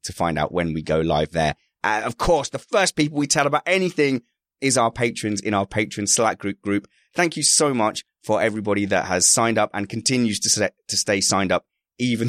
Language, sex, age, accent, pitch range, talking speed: English, male, 20-39, British, 95-120 Hz, 225 wpm